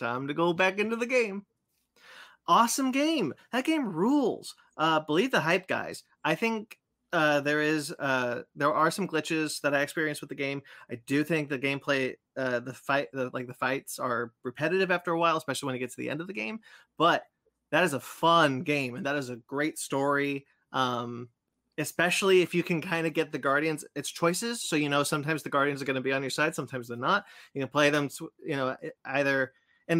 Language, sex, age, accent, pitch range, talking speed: English, male, 20-39, American, 125-165 Hz, 215 wpm